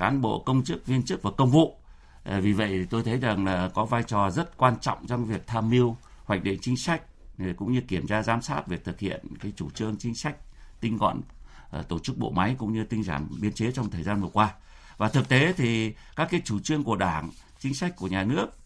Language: Vietnamese